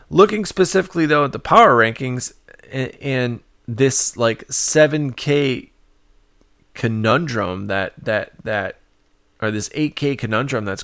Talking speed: 110 wpm